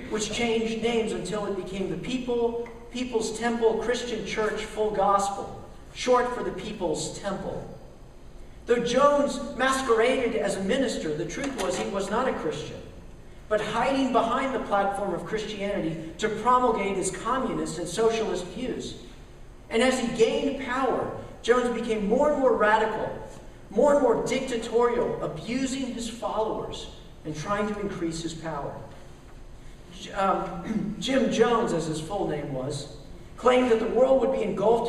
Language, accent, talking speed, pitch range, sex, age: English, American, 150 wpm, 195-245 Hz, male, 50-69